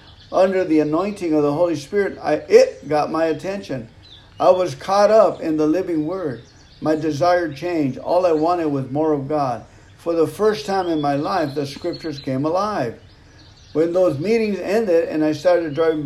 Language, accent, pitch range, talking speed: English, American, 140-180 Hz, 180 wpm